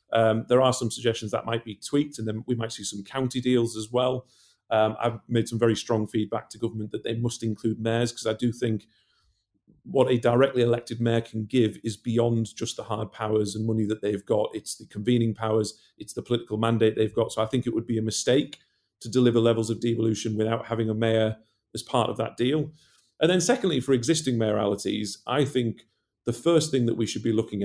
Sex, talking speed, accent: male, 225 wpm, British